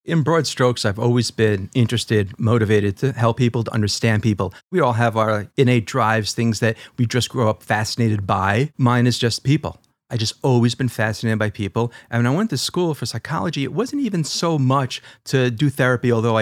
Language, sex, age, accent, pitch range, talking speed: English, male, 40-59, American, 115-155 Hz, 205 wpm